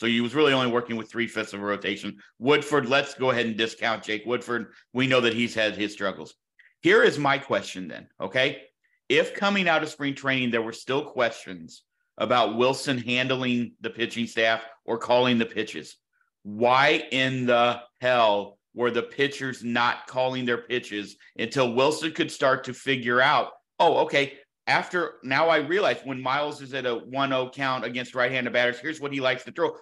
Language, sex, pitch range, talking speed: English, male, 120-175 Hz, 185 wpm